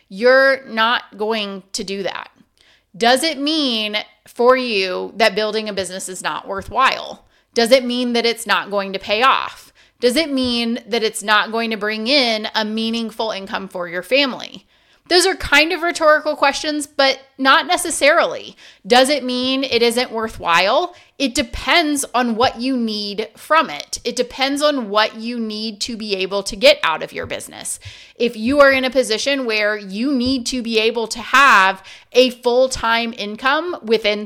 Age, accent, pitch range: 30-49, American, 210-270 Hz